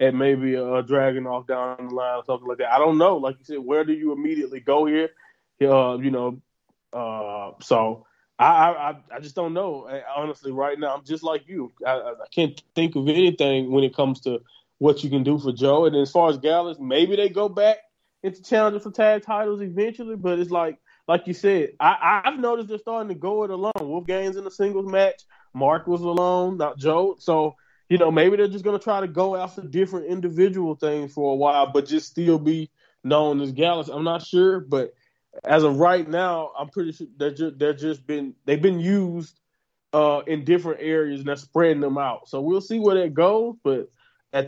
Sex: male